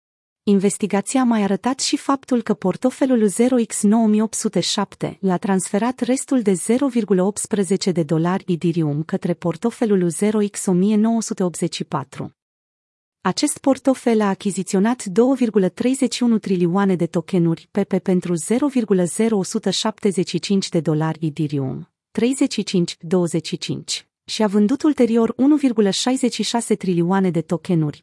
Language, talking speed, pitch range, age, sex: Romanian, 90 wpm, 175-230 Hz, 30-49, female